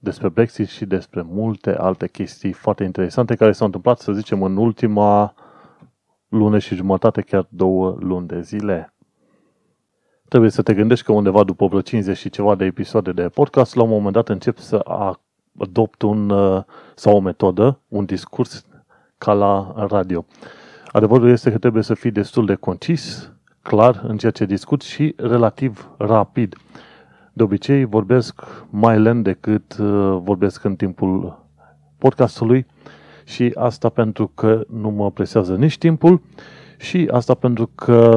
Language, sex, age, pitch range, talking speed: Romanian, male, 30-49, 100-125 Hz, 150 wpm